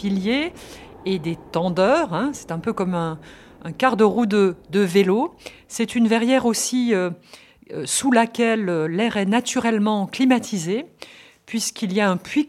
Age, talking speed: 50-69, 155 wpm